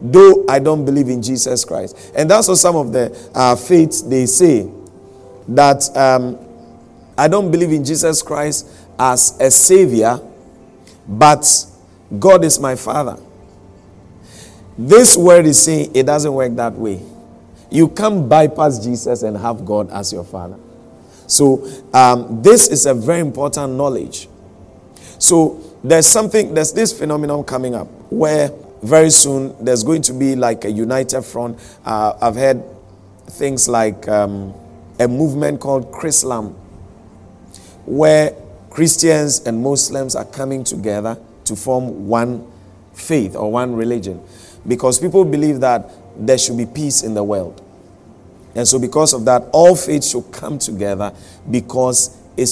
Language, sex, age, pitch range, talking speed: English, male, 50-69, 105-150 Hz, 145 wpm